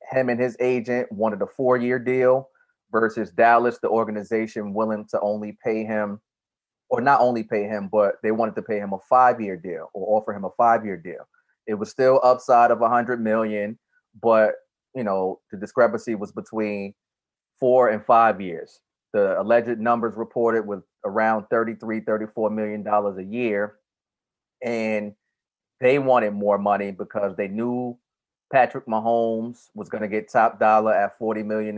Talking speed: 165 wpm